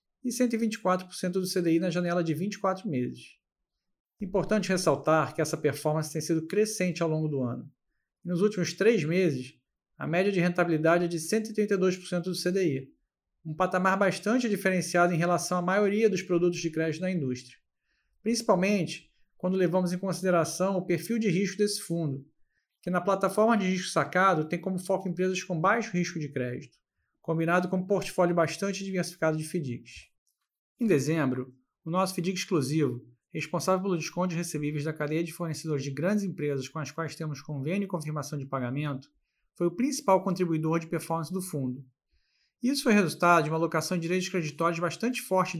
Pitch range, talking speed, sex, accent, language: 160-195 Hz, 165 wpm, male, Brazilian, Portuguese